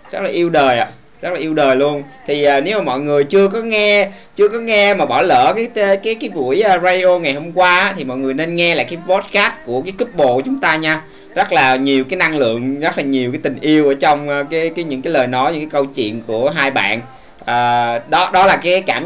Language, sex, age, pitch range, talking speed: Vietnamese, male, 20-39, 135-185 Hz, 260 wpm